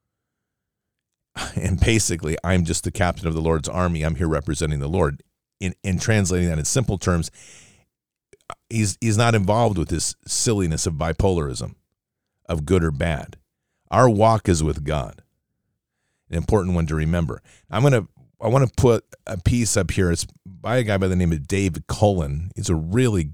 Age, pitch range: 40-59, 85-105 Hz